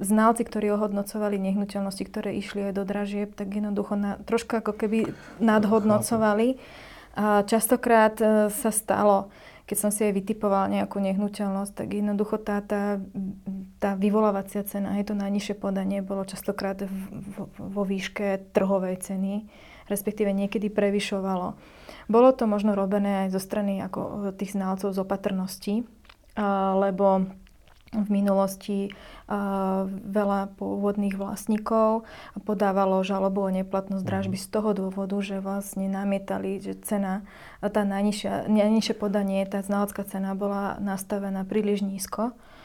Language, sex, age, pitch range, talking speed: Czech, female, 30-49, 195-210 Hz, 120 wpm